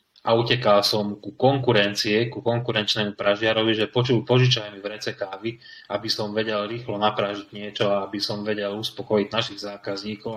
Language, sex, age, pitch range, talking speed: Slovak, male, 20-39, 100-110 Hz, 155 wpm